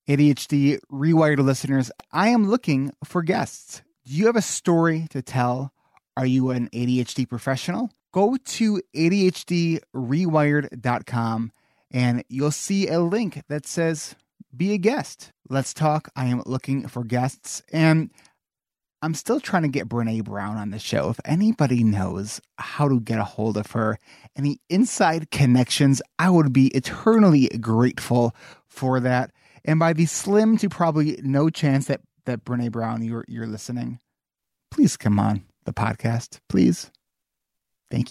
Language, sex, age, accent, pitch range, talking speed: English, male, 30-49, American, 115-165 Hz, 150 wpm